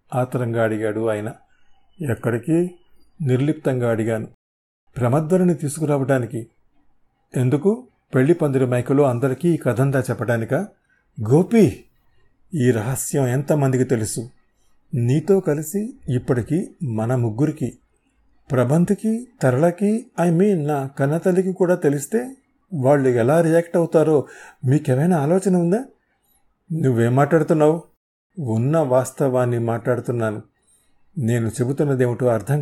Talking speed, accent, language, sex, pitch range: 90 wpm, native, Telugu, male, 120-160 Hz